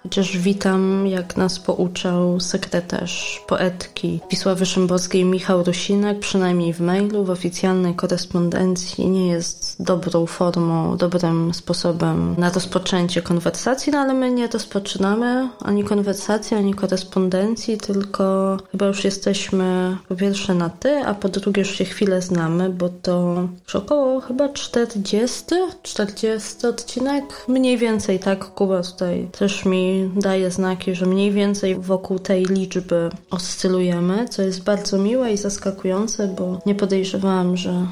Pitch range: 180-205 Hz